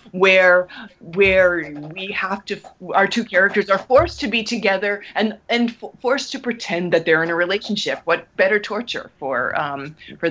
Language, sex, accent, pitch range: English, female, American, 160-210 Hz